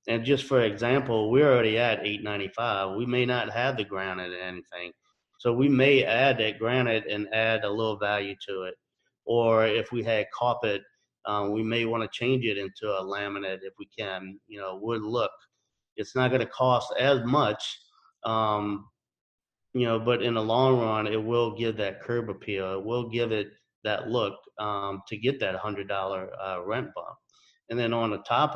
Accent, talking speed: American, 200 wpm